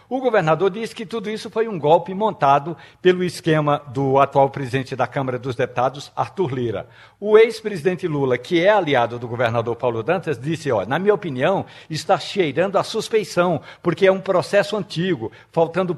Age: 60-79